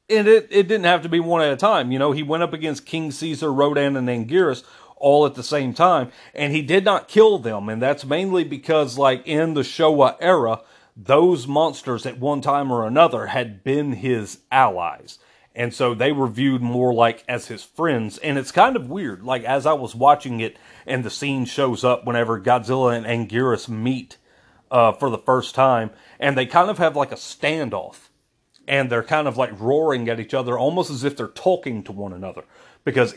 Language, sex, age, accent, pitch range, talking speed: English, male, 40-59, American, 120-145 Hz, 205 wpm